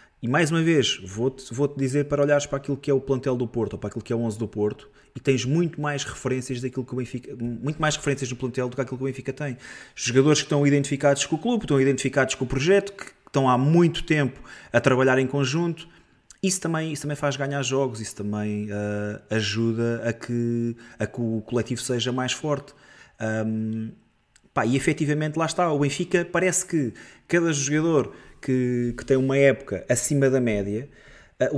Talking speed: 205 wpm